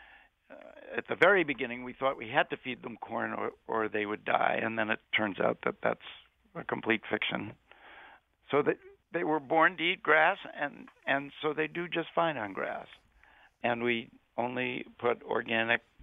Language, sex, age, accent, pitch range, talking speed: English, male, 60-79, American, 125-200 Hz, 185 wpm